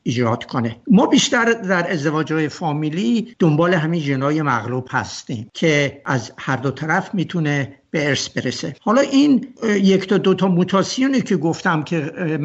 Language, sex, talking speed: Persian, male, 150 wpm